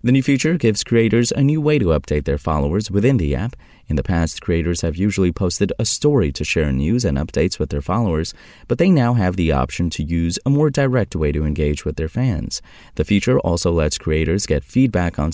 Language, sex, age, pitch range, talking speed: English, male, 30-49, 80-115 Hz, 225 wpm